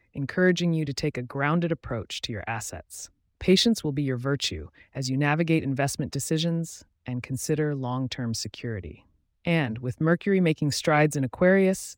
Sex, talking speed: female, 155 wpm